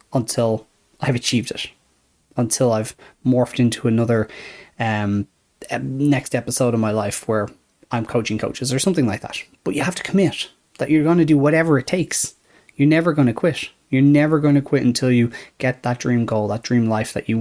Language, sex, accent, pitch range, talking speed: English, male, Irish, 115-150 Hz, 195 wpm